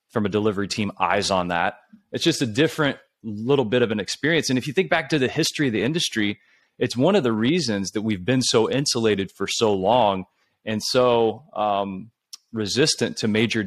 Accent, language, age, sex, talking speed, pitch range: American, English, 30-49, male, 200 wpm, 110-135 Hz